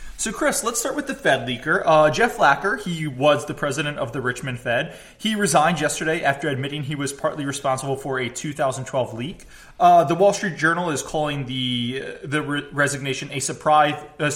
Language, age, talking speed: English, 20-39, 190 wpm